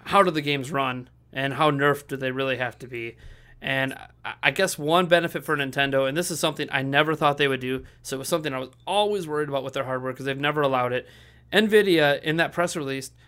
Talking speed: 240 wpm